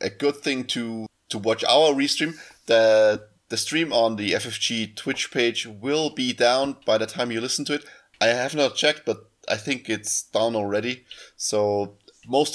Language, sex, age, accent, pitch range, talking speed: English, male, 20-39, German, 100-125 Hz, 180 wpm